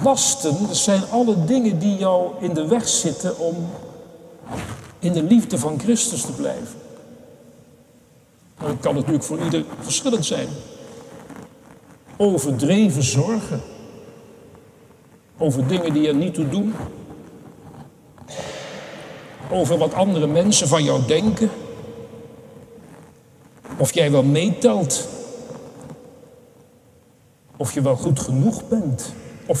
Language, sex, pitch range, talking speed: Dutch, male, 155-235 Hz, 105 wpm